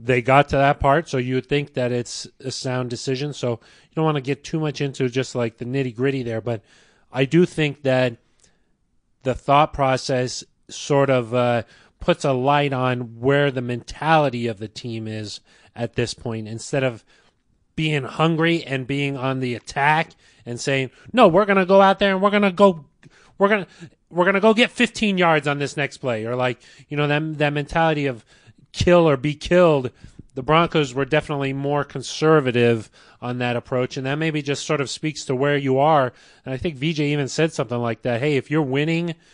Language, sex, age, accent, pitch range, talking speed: English, male, 30-49, American, 125-145 Hz, 205 wpm